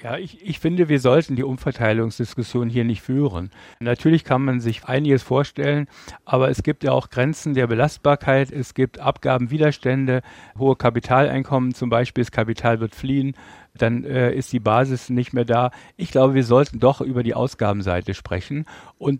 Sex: male